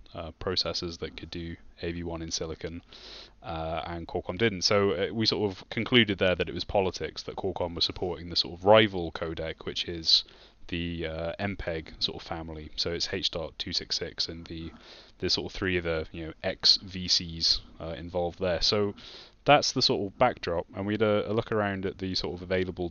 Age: 20-39